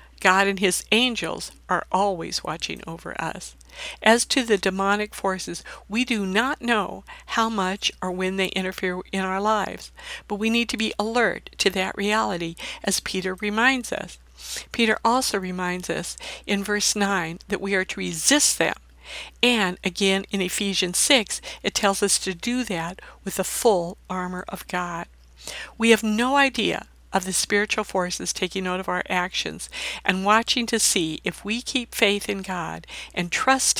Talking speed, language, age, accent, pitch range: 170 wpm, English, 60-79, American, 185-225 Hz